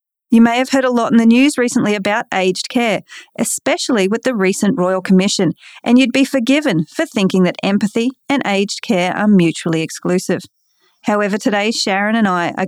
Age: 30-49